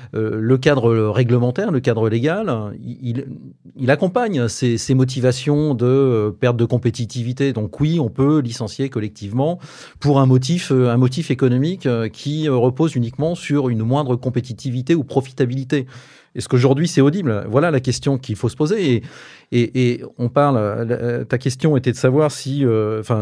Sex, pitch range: male, 120-140 Hz